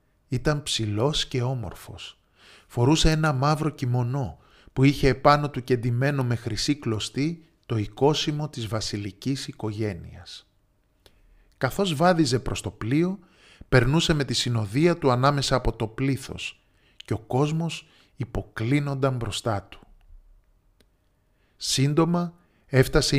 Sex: male